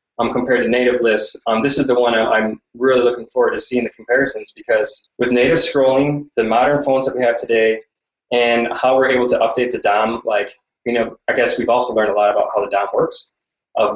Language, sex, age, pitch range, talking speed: English, male, 20-39, 115-135 Hz, 230 wpm